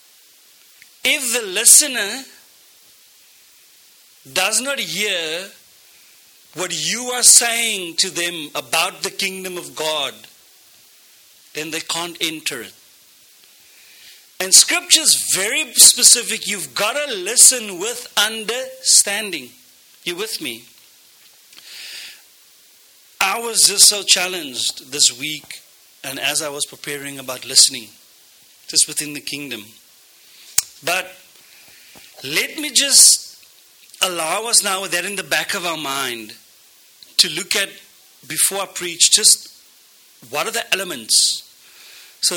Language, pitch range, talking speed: English, 150-225 Hz, 115 wpm